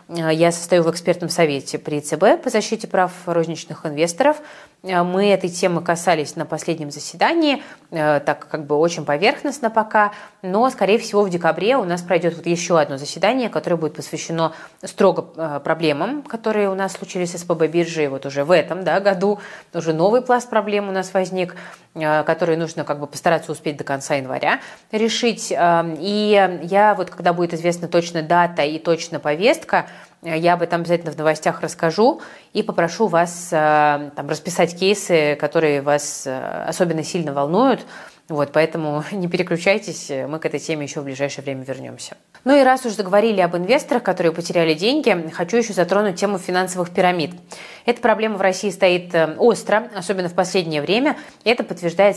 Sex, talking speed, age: female, 165 wpm, 20-39